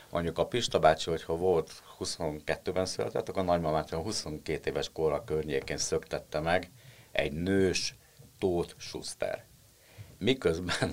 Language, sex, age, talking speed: Hungarian, male, 60-79, 120 wpm